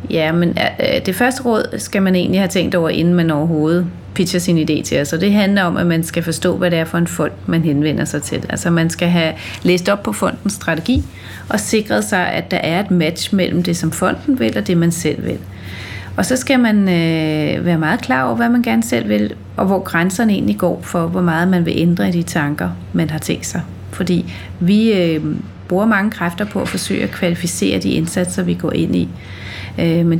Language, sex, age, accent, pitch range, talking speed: Danish, female, 30-49, native, 120-185 Hz, 220 wpm